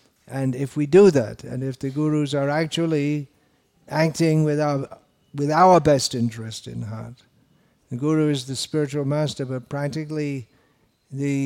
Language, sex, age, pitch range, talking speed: English, male, 60-79, 130-160 Hz, 150 wpm